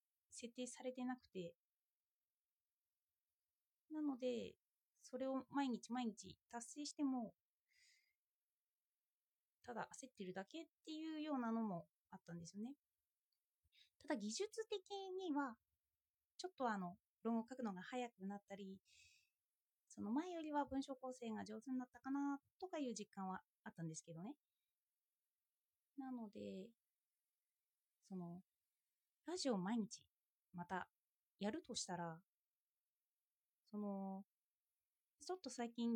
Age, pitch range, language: 20-39, 200-280 Hz, Japanese